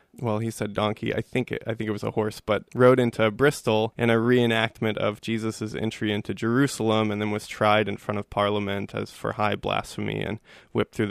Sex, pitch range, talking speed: male, 110-115 Hz, 205 wpm